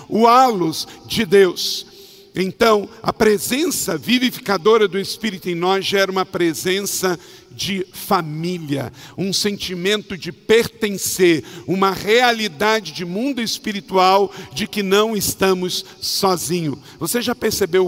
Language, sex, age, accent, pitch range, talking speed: Portuguese, male, 50-69, Brazilian, 165-205 Hz, 115 wpm